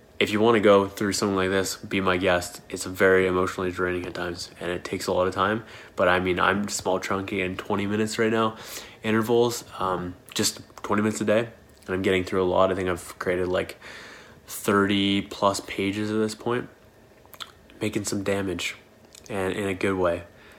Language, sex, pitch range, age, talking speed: English, male, 90-105 Hz, 20-39, 200 wpm